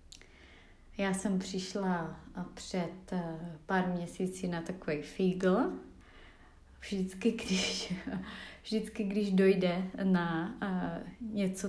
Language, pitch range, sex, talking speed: Czech, 170-200 Hz, female, 80 wpm